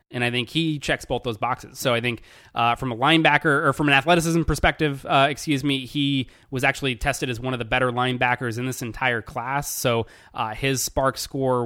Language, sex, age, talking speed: English, male, 30-49, 215 wpm